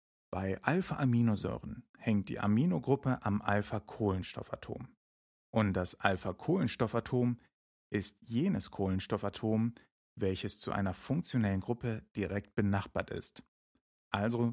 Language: German